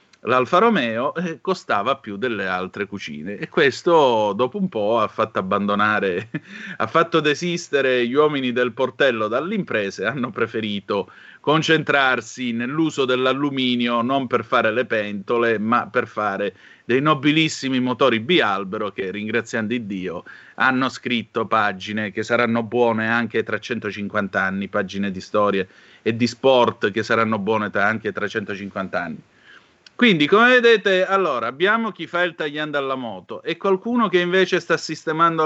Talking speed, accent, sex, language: 145 wpm, native, male, Italian